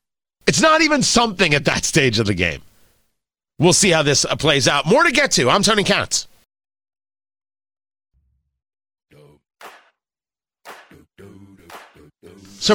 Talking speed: 115 wpm